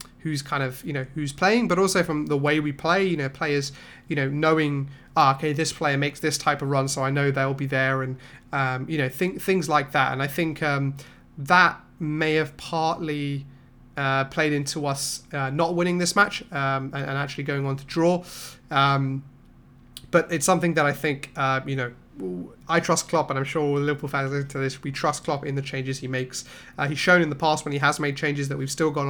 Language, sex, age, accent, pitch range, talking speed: English, male, 30-49, British, 135-160 Hz, 230 wpm